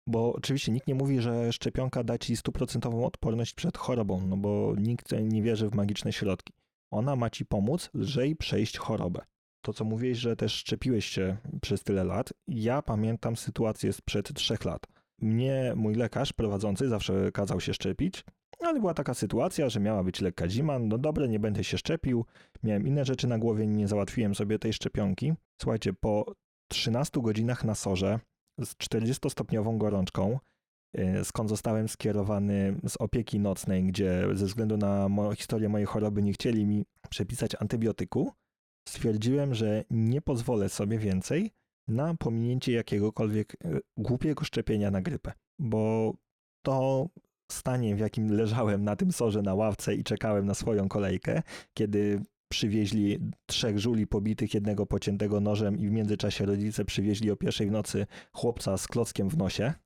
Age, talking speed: 30-49, 155 wpm